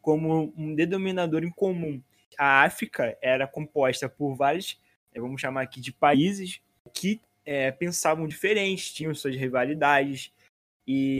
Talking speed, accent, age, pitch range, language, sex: 130 wpm, Brazilian, 20-39, 135-180 Hz, Portuguese, male